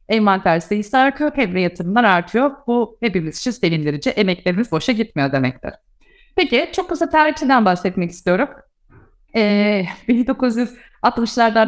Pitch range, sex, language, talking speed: 180-235 Hz, female, Turkish, 110 wpm